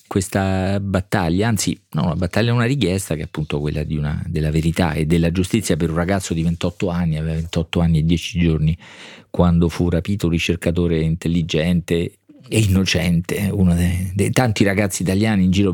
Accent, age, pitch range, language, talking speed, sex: native, 40-59, 90-110 Hz, Italian, 185 wpm, male